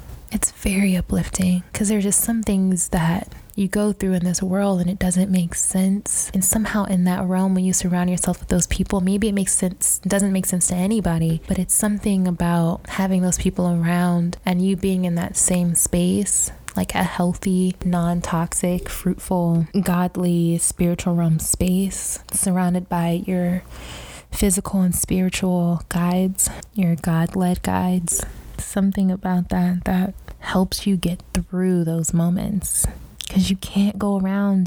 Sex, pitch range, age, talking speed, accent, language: female, 175-190 Hz, 20-39, 155 wpm, American, English